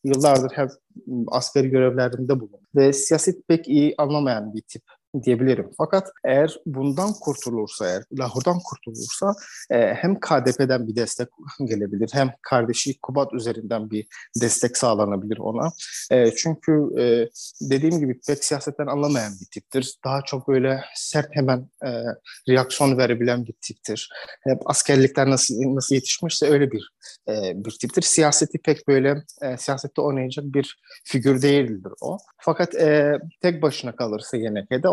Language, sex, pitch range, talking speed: Turkish, male, 125-150 Hz, 135 wpm